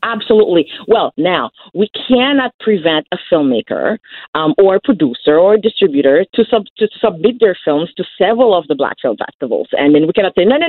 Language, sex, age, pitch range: English, female, 40-59, 155-225 Hz